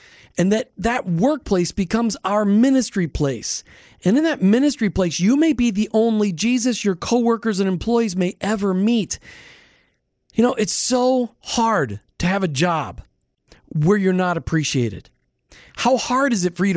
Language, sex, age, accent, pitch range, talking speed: English, male, 40-59, American, 175-235 Hz, 160 wpm